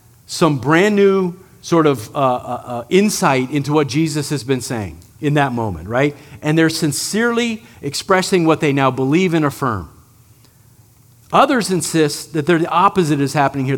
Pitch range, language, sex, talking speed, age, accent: 125-180 Hz, English, male, 160 wpm, 50-69, American